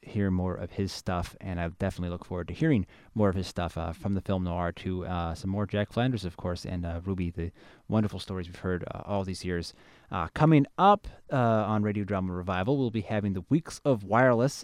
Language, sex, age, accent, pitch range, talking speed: English, male, 30-49, American, 95-130 Hz, 230 wpm